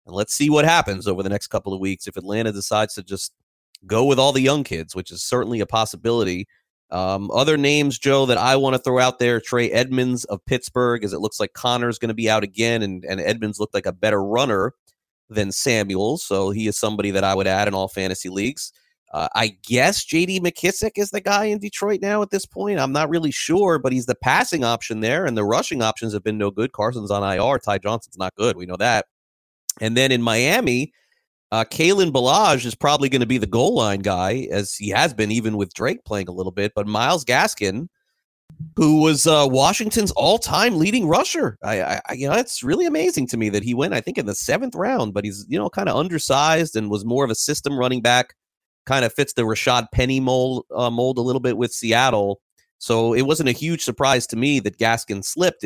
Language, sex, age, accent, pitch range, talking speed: English, male, 30-49, American, 105-140 Hz, 230 wpm